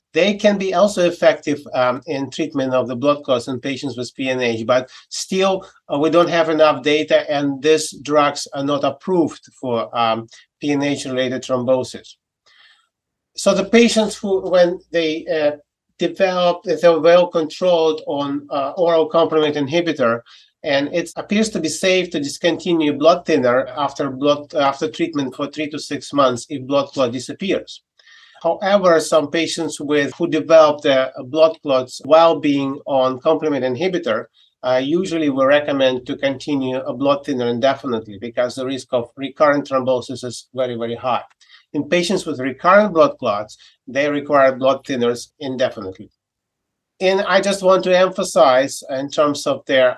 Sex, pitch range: male, 130-160 Hz